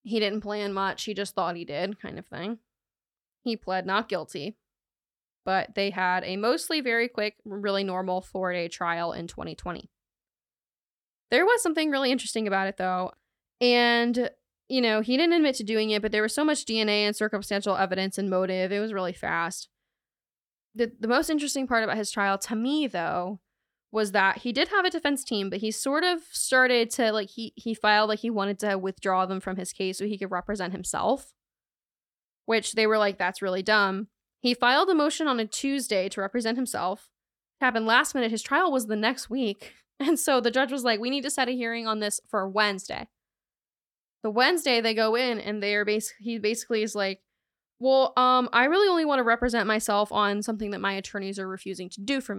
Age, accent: 20-39, American